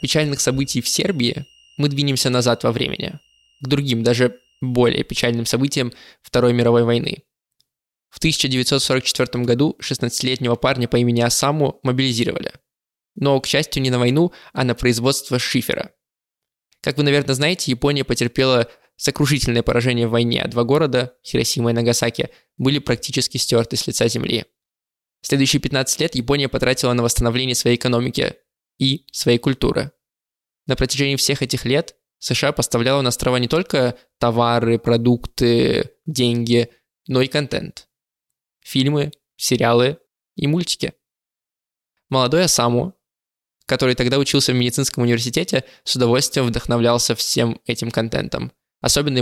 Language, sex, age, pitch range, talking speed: Russian, male, 20-39, 120-140 Hz, 130 wpm